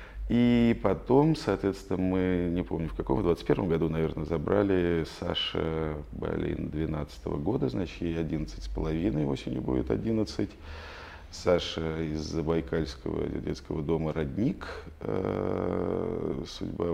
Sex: male